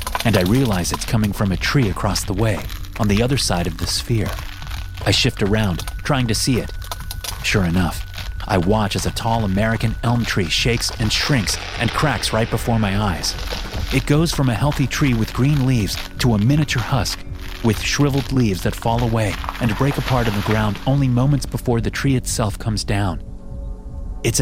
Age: 30-49